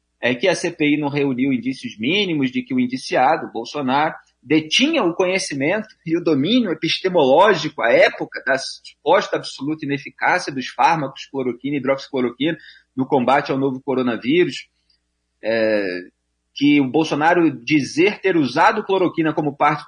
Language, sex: Portuguese, male